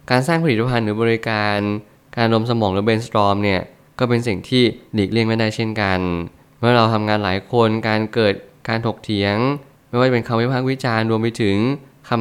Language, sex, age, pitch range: Thai, male, 20-39, 105-120 Hz